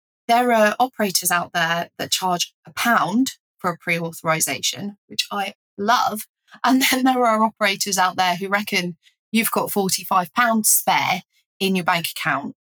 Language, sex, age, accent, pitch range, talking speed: English, female, 20-39, British, 165-210 Hz, 150 wpm